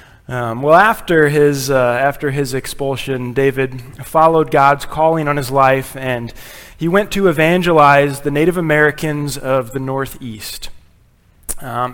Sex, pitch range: male, 125-155 Hz